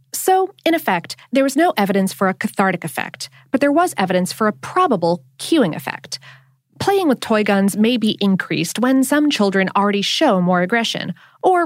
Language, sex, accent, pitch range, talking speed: English, female, American, 180-285 Hz, 180 wpm